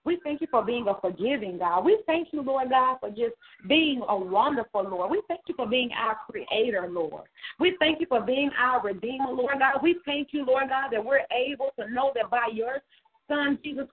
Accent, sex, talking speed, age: American, female, 215 wpm, 40-59